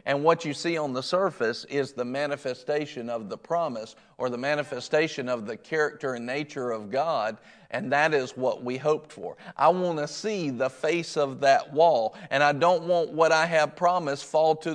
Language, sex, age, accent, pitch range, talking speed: English, male, 40-59, American, 145-185 Hz, 200 wpm